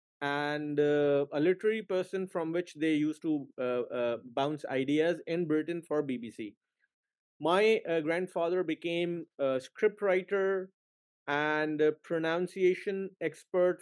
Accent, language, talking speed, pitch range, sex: Indian, English, 125 wpm, 145-180 Hz, male